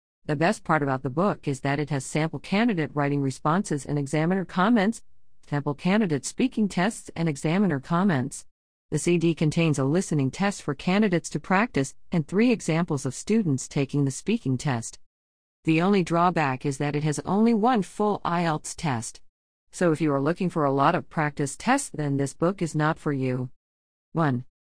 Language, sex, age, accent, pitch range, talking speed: English, female, 40-59, American, 140-185 Hz, 180 wpm